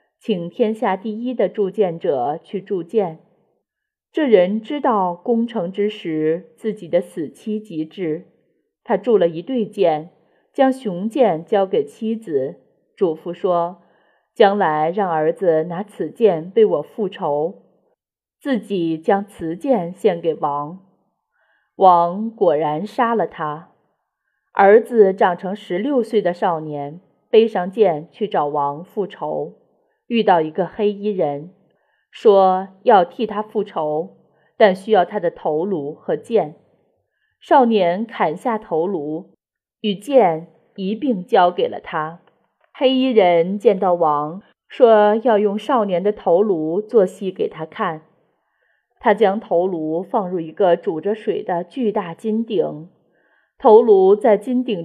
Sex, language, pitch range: female, Chinese, 170-225 Hz